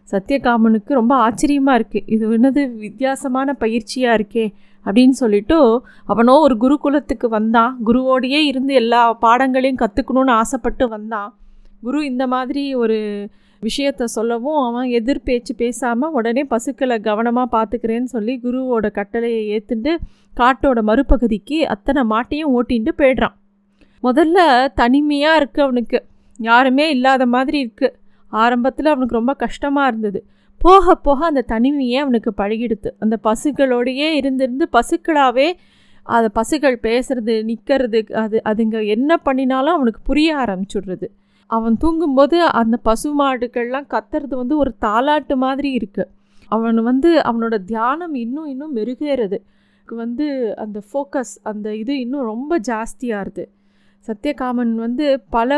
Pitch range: 225-275 Hz